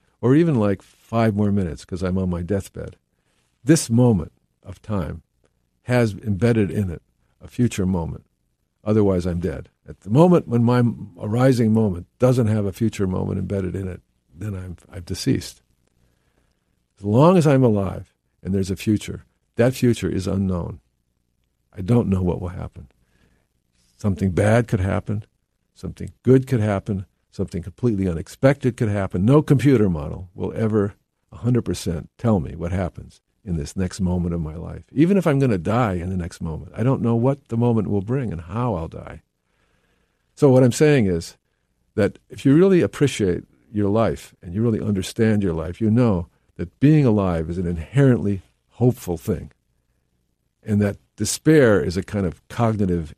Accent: American